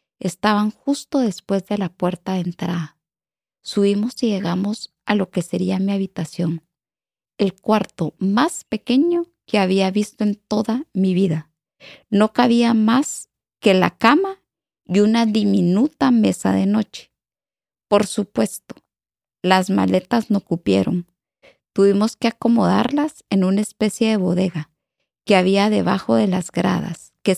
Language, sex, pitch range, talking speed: English, female, 175-220 Hz, 135 wpm